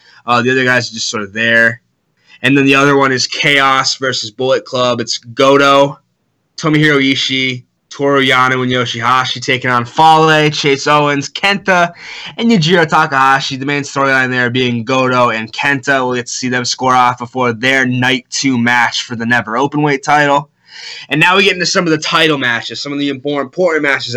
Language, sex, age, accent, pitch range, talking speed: English, male, 20-39, American, 125-155 Hz, 190 wpm